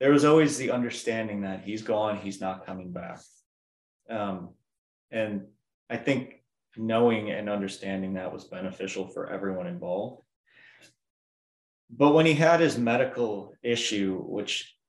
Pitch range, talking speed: 95-115 Hz, 135 wpm